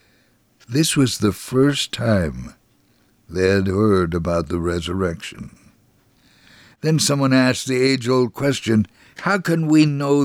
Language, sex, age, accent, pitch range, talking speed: English, male, 60-79, American, 100-130 Hz, 125 wpm